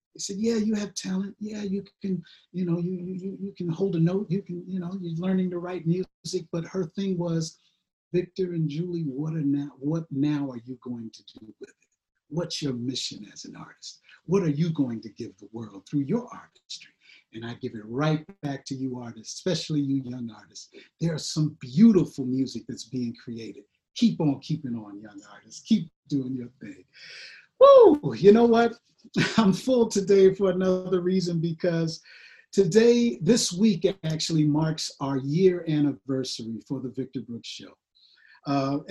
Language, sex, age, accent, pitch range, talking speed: English, male, 50-69, American, 135-185 Hz, 185 wpm